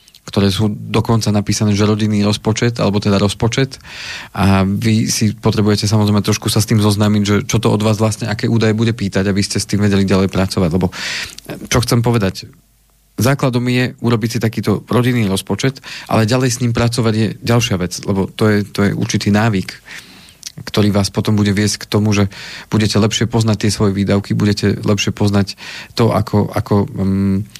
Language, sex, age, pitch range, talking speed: Slovak, male, 40-59, 100-115 Hz, 180 wpm